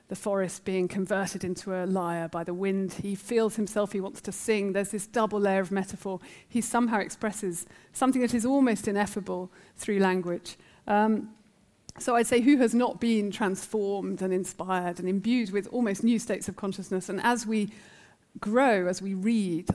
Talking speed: 180 wpm